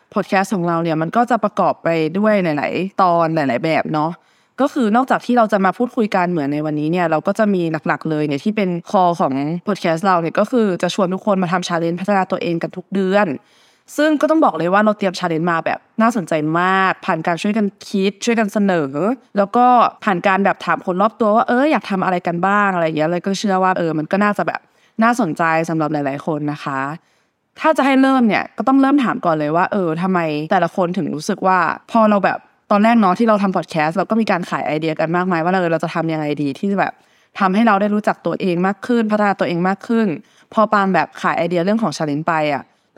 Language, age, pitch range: Thai, 20-39, 165-210 Hz